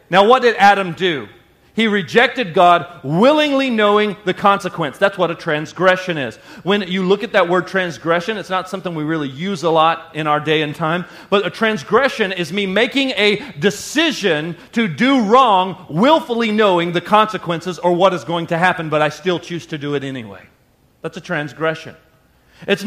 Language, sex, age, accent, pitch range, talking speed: English, male, 40-59, American, 175-235 Hz, 185 wpm